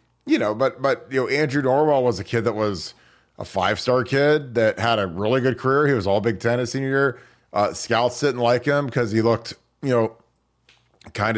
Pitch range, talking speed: 100-120 Hz, 215 wpm